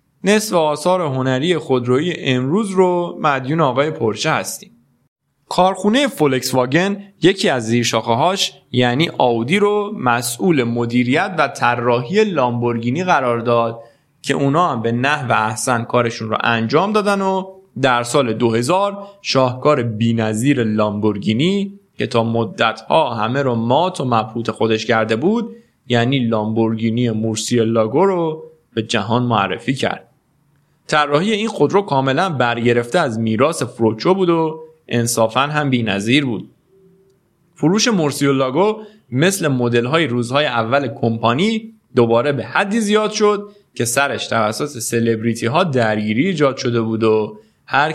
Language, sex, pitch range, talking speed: Persian, male, 115-170 Hz, 130 wpm